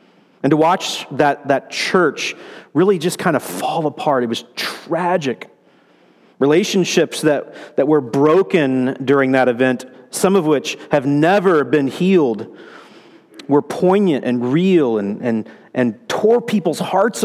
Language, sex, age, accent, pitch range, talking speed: English, male, 40-59, American, 120-175 Hz, 140 wpm